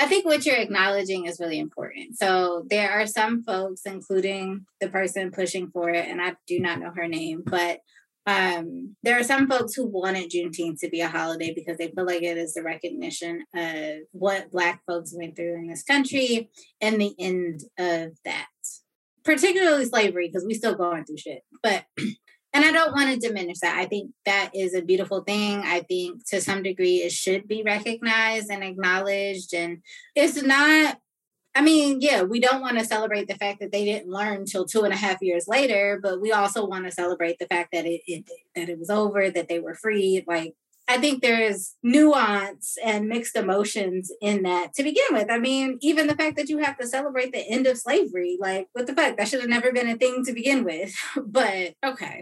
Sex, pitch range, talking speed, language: female, 180-245 Hz, 210 wpm, English